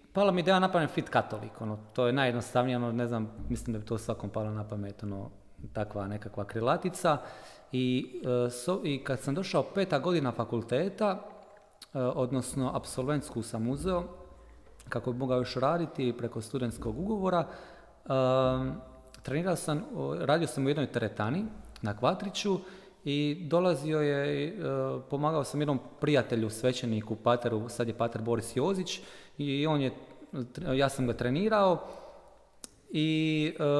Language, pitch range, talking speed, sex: Croatian, 120-155 Hz, 135 wpm, male